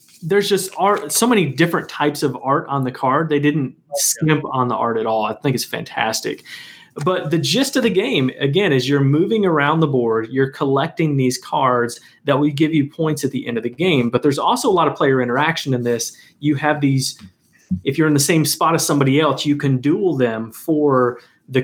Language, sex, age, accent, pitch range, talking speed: English, male, 30-49, American, 125-155 Hz, 220 wpm